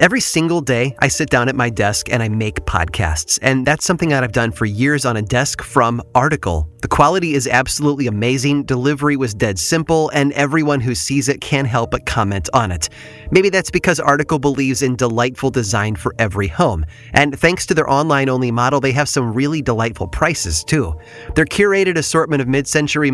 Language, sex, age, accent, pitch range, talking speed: English, male, 30-49, American, 120-145 Hz, 195 wpm